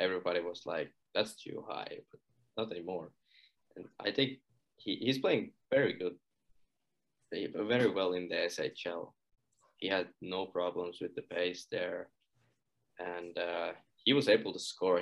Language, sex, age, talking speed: English, male, 20-39, 140 wpm